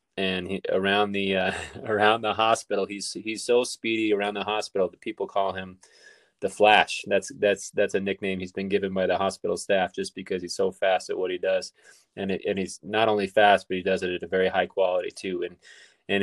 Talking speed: 225 wpm